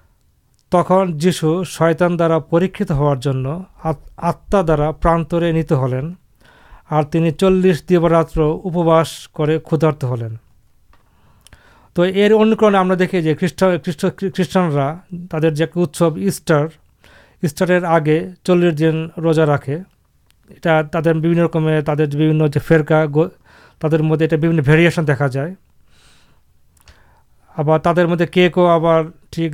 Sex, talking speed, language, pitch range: male, 90 wpm, Urdu, 150-175 Hz